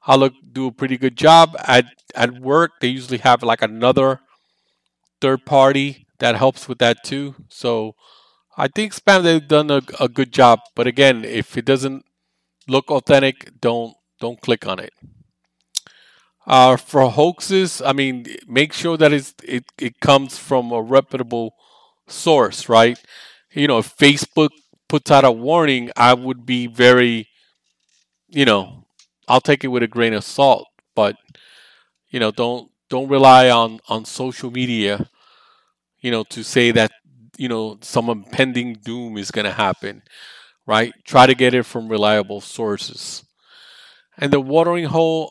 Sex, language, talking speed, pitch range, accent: male, English, 160 wpm, 120-140 Hz, American